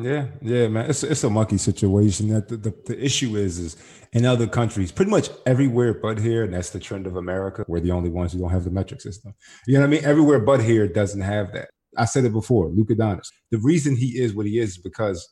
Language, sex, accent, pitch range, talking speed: English, male, American, 95-120 Hz, 250 wpm